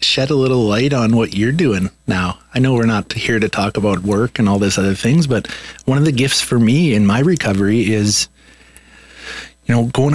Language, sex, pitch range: English, male, 95-115 Hz